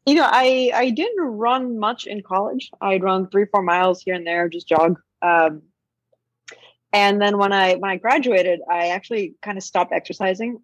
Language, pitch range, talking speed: English, 180-230 Hz, 185 wpm